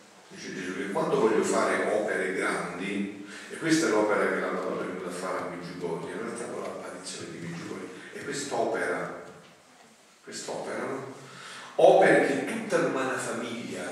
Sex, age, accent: male, 40-59, native